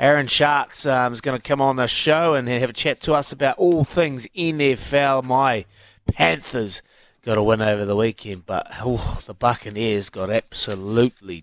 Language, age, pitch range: English, 30-49, 110-140 Hz